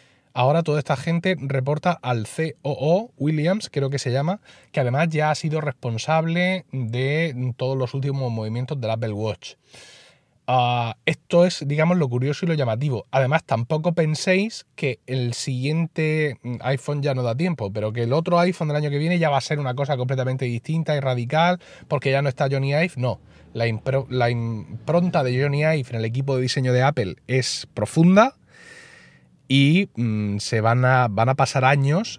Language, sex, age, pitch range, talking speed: Spanish, male, 30-49, 120-165 Hz, 175 wpm